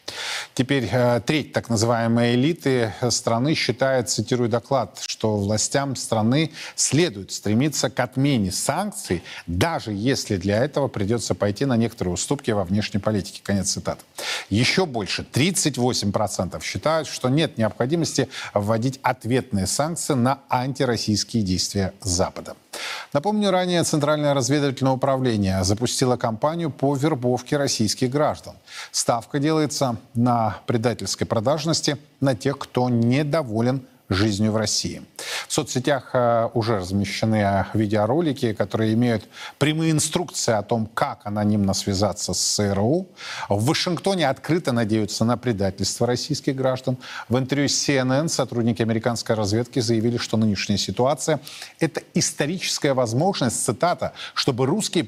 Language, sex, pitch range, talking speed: Russian, male, 110-140 Hz, 120 wpm